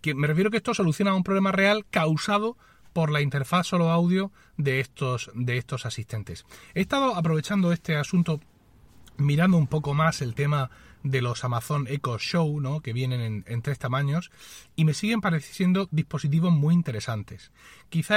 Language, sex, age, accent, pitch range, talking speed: Spanish, male, 30-49, Spanish, 140-180 Hz, 170 wpm